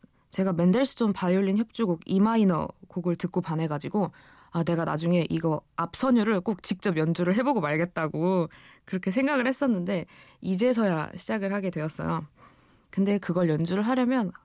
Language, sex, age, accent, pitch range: Korean, female, 20-39, native, 165-225 Hz